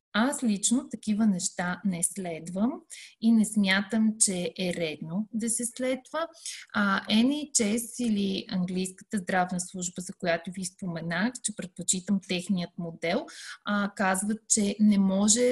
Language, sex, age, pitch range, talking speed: Bulgarian, female, 30-49, 180-235 Hz, 130 wpm